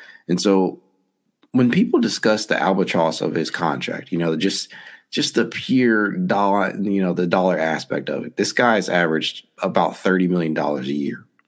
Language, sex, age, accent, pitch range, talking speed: English, male, 30-49, American, 85-100 Hz, 175 wpm